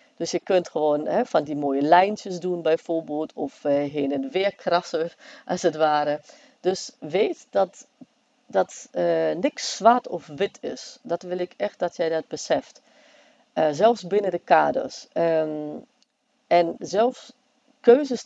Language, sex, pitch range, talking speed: Dutch, female, 160-240 Hz, 155 wpm